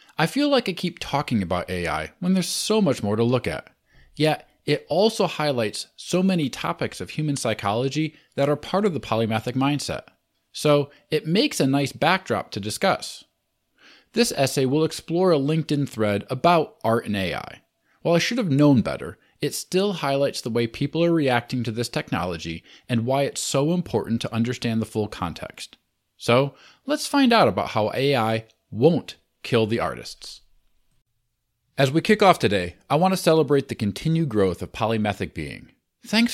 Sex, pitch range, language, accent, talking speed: male, 115-170 Hz, English, American, 175 wpm